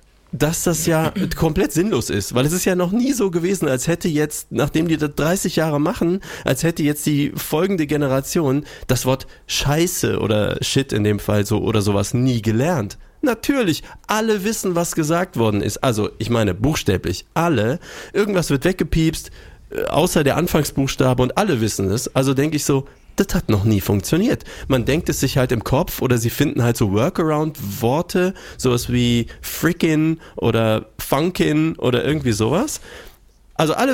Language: German